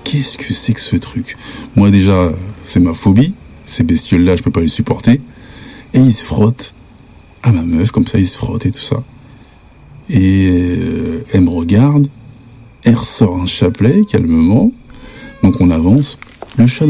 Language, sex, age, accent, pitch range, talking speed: French, male, 50-69, French, 95-125 Hz, 175 wpm